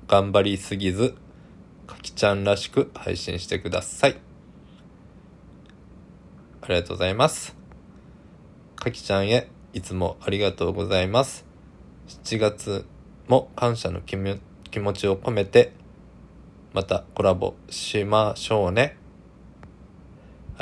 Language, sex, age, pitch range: Japanese, male, 20-39, 95-110 Hz